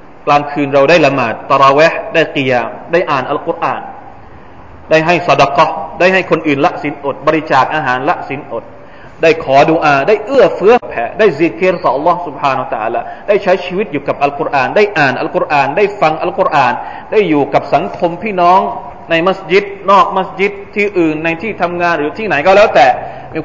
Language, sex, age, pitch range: Thai, male, 20-39, 155-195 Hz